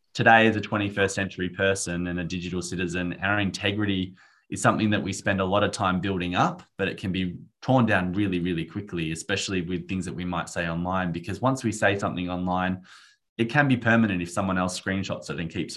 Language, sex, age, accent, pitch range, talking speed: English, male, 20-39, Australian, 90-110 Hz, 215 wpm